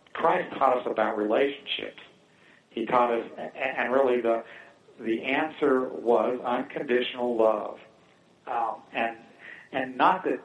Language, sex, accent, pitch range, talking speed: English, male, American, 110-135 Hz, 120 wpm